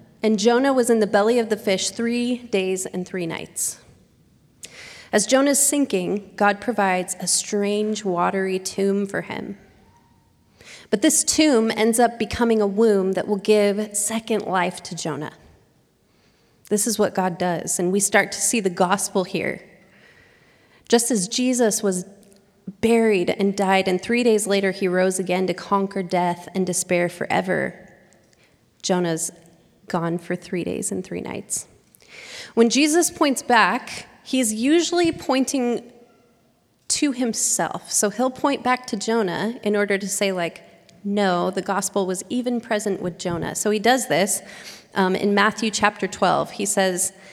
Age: 30-49